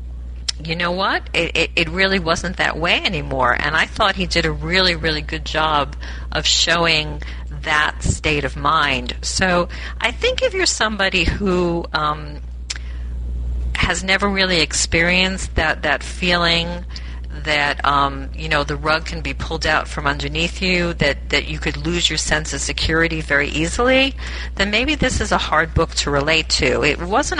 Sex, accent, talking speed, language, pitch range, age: female, American, 170 wpm, English, 135-175 Hz, 40-59